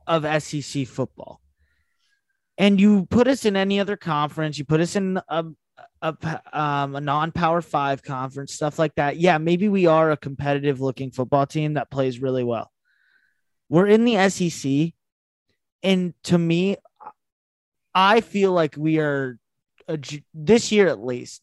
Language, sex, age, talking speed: English, male, 20-39, 150 wpm